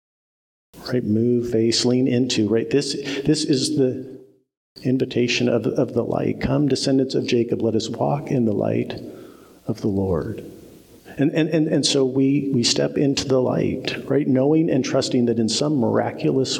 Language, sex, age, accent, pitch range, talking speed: English, male, 50-69, American, 95-135 Hz, 170 wpm